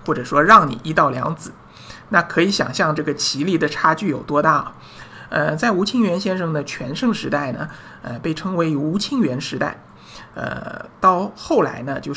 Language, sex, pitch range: Chinese, male, 145-180 Hz